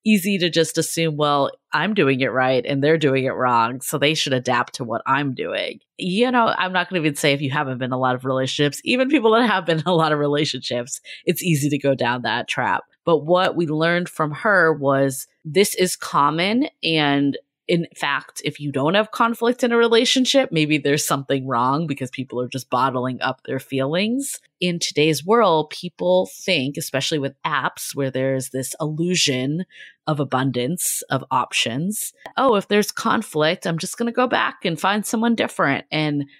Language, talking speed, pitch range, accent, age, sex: English, 200 wpm, 140-180 Hz, American, 30-49, female